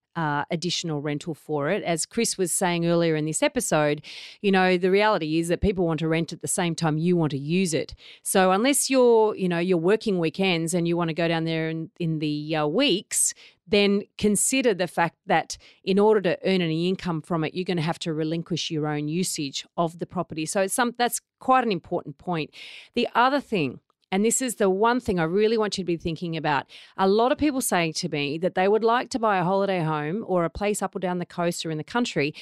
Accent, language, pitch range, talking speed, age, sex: Australian, English, 160-215 Hz, 240 wpm, 40-59, female